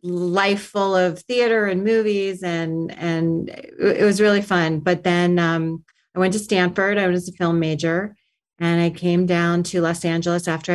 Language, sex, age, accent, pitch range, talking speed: English, female, 30-49, American, 170-195 Hz, 180 wpm